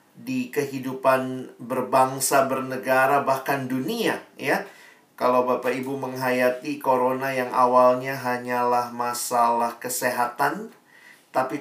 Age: 40-59